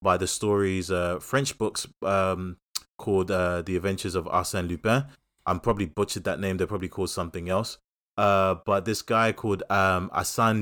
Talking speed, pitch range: 175 wpm, 90-110 Hz